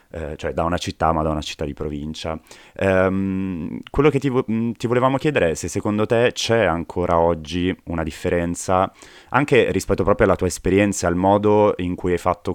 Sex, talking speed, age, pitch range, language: male, 175 wpm, 20-39, 85-95 Hz, Italian